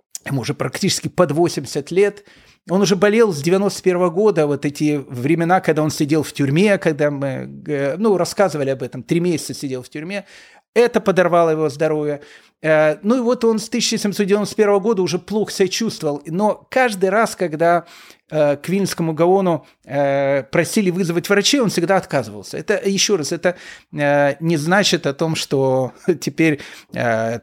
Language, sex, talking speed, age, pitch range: Russian, male, 155 wpm, 30-49, 150-200 Hz